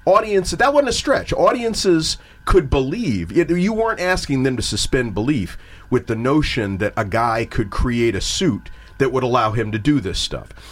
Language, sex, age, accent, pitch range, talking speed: English, male, 40-59, American, 100-145 Hz, 185 wpm